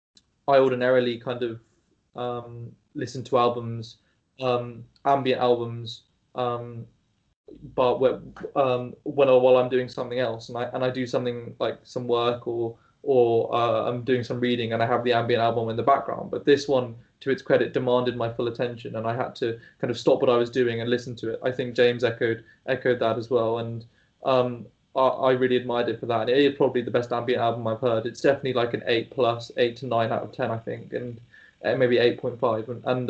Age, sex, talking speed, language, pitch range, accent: 20-39, male, 210 wpm, English, 115-130 Hz, British